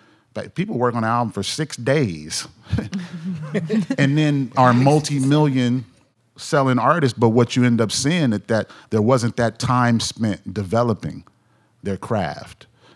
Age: 40-59